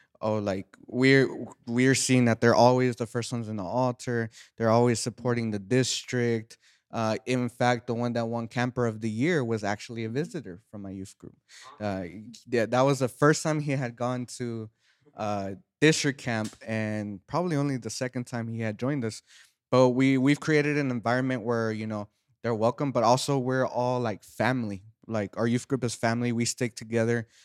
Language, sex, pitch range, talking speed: Spanish, male, 105-125 Hz, 195 wpm